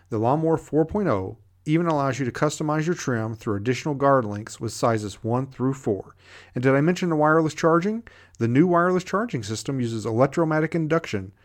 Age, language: 40-59, English